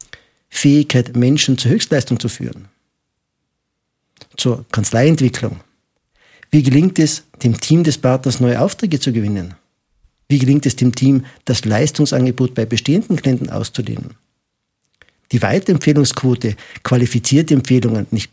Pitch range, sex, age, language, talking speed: 120-150 Hz, male, 50-69, German, 115 wpm